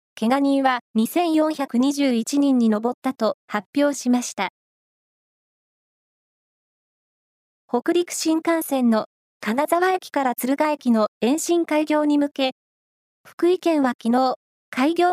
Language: Japanese